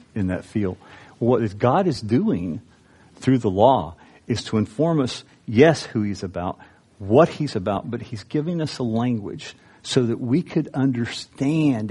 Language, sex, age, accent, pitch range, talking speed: English, male, 50-69, American, 100-125 Hz, 160 wpm